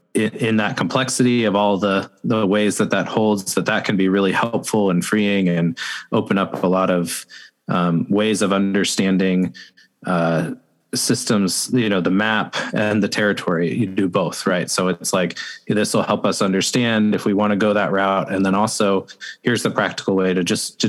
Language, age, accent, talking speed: English, 20-39, American, 190 wpm